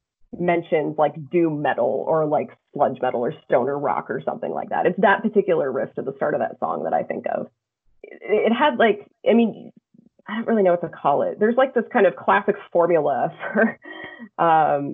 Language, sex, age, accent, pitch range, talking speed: English, female, 30-49, American, 160-245 Hz, 205 wpm